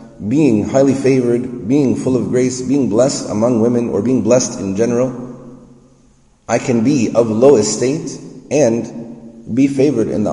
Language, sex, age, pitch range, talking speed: English, male, 30-49, 105-130 Hz, 155 wpm